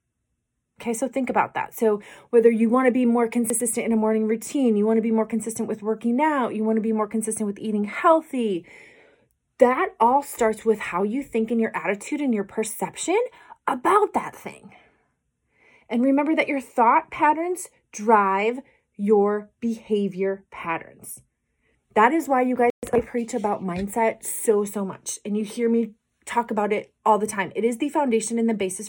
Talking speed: 185 wpm